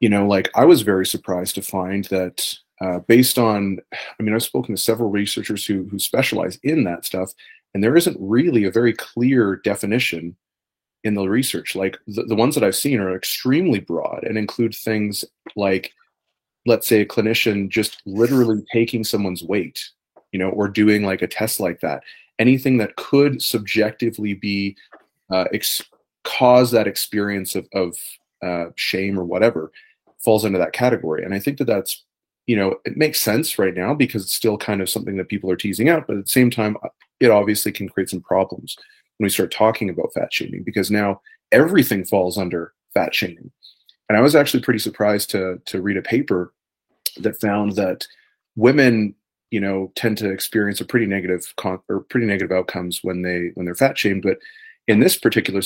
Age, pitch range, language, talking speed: 30-49, 95-115 Hz, English, 185 wpm